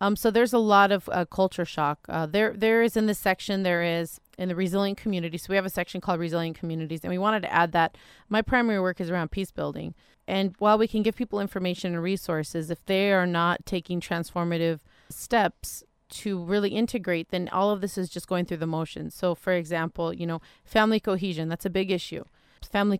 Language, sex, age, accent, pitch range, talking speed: English, female, 30-49, American, 165-200 Hz, 220 wpm